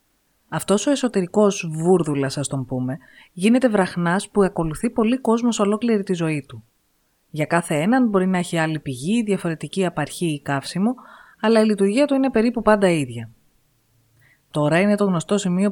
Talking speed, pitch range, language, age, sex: 160 wpm, 150-215 Hz, Greek, 30-49, female